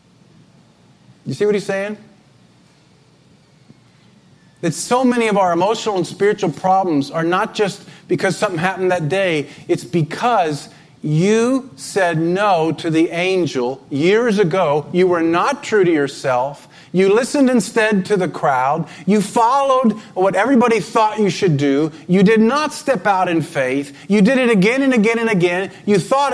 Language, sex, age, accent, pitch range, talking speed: English, male, 50-69, American, 165-225 Hz, 155 wpm